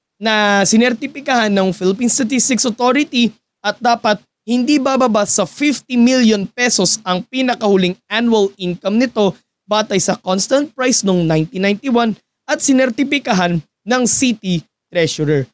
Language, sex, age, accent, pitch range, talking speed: Filipino, male, 20-39, native, 170-240 Hz, 115 wpm